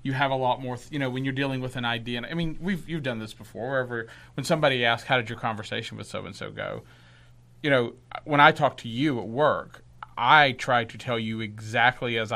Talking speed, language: 235 wpm, English